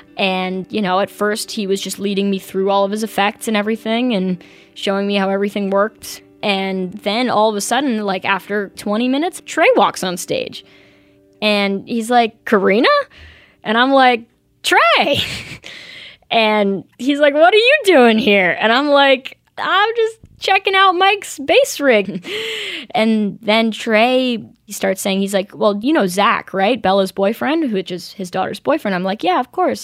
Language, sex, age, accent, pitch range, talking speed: English, female, 10-29, American, 190-240 Hz, 175 wpm